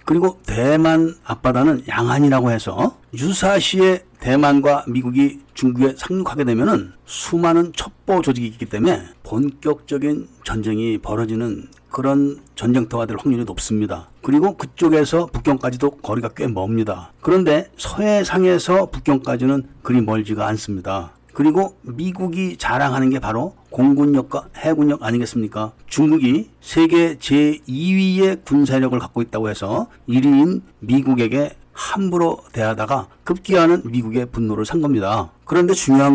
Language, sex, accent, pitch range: Korean, male, native, 120-165 Hz